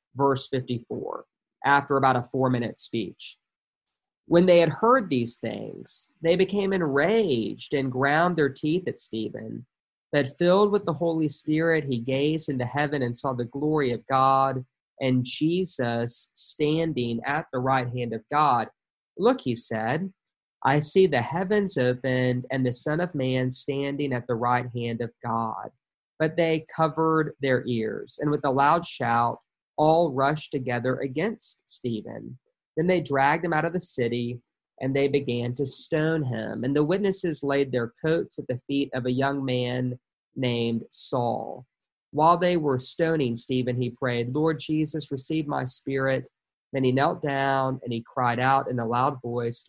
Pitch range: 125-155 Hz